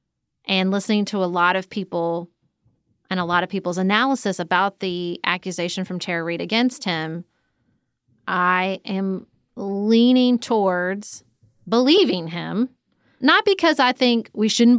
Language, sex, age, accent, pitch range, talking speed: English, female, 30-49, American, 180-225 Hz, 135 wpm